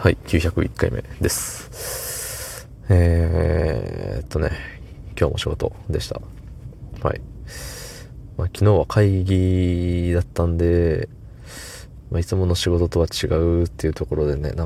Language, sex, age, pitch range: Japanese, male, 20-39, 80-100 Hz